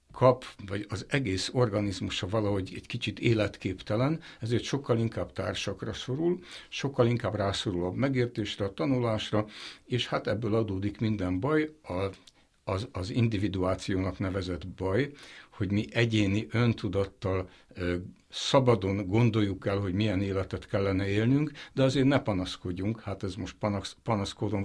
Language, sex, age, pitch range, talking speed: Hungarian, male, 60-79, 95-120 Hz, 125 wpm